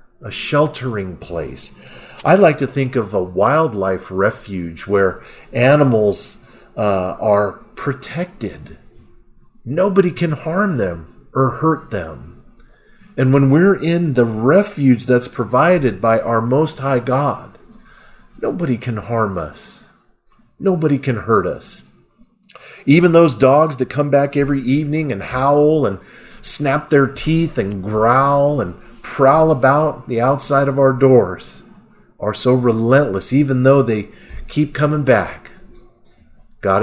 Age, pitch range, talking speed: 40-59, 105-150 Hz, 125 wpm